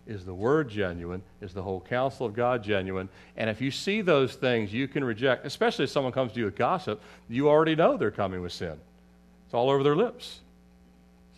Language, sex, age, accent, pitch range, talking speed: English, male, 40-59, American, 85-115 Hz, 215 wpm